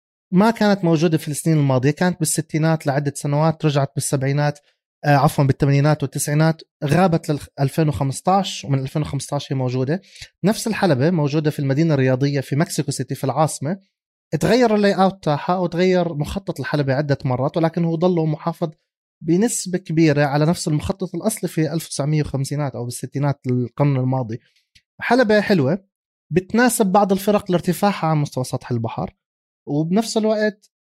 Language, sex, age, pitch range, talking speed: Arabic, male, 30-49, 135-175 Hz, 140 wpm